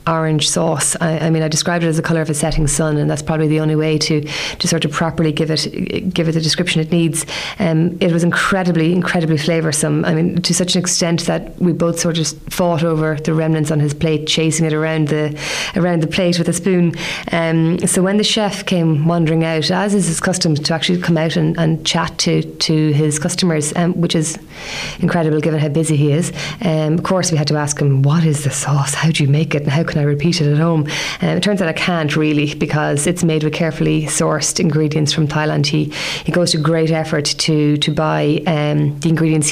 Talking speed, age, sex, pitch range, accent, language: 235 wpm, 30-49, female, 155-170 Hz, Irish, English